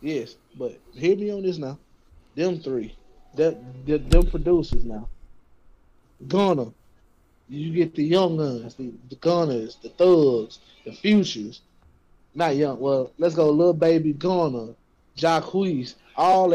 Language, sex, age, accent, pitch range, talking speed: English, male, 20-39, American, 130-180 Hz, 130 wpm